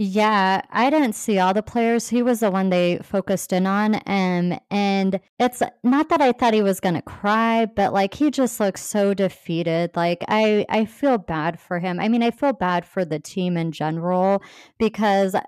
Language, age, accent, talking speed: English, 30-49, American, 200 wpm